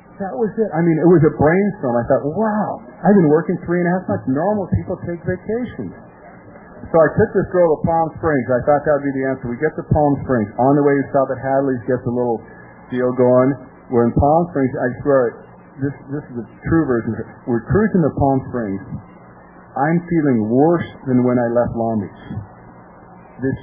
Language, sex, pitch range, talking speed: English, male, 125-170 Hz, 210 wpm